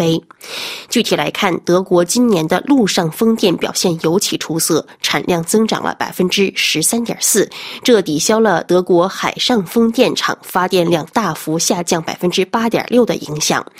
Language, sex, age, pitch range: Chinese, female, 20-39, 170-240 Hz